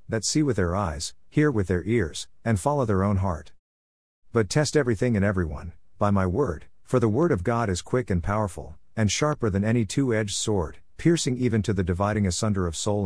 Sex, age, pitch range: male, 50-69, 85-115 Hz